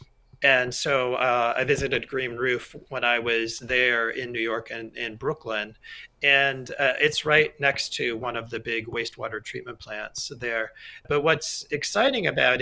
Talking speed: 165 wpm